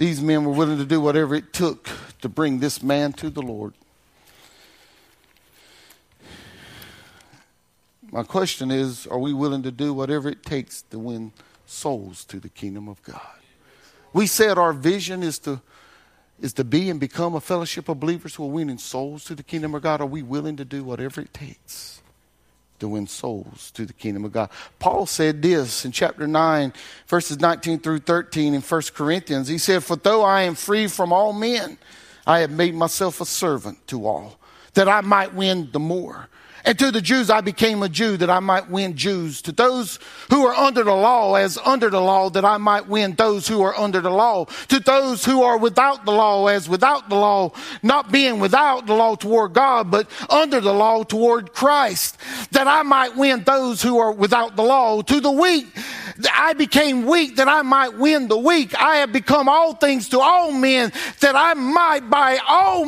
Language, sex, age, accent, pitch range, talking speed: English, male, 50-69, American, 155-255 Hz, 195 wpm